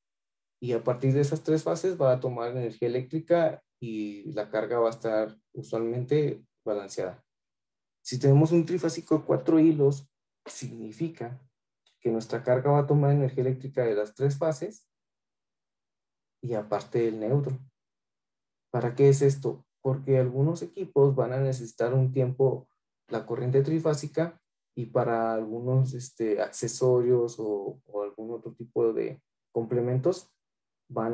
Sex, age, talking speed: male, 30-49, 140 wpm